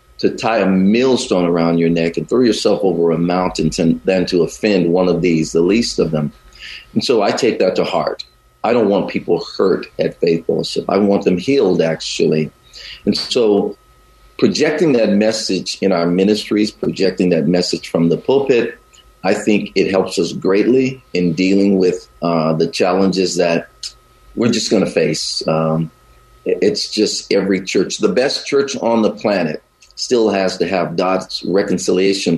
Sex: male